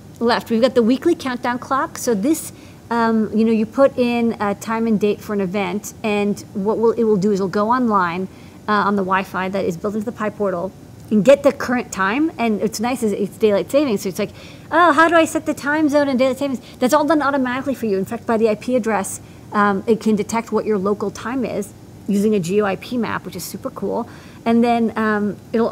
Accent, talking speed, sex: American, 240 wpm, female